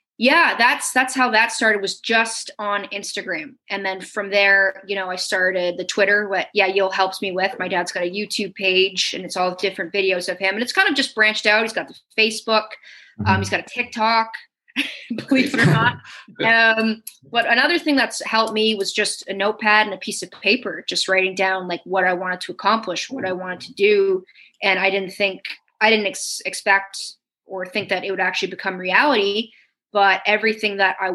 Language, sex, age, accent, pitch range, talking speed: English, female, 20-39, American, 185-215 Hz, 210 wpm